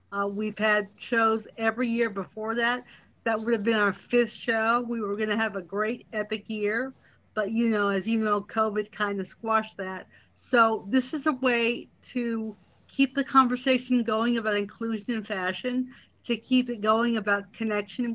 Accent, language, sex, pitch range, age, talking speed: American, English, female, 210-235 Hz, 50-69, 180 wpm